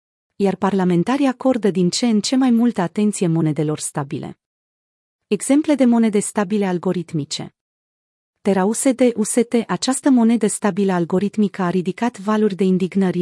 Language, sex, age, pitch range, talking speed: Romanian, female, 30-49, 175-225 Hz, 125 wpm